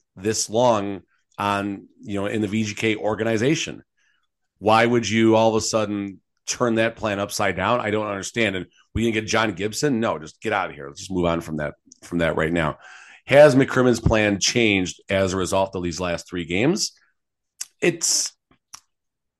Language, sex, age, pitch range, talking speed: English, male, 40-59, 95-110 Hz, 185 wpm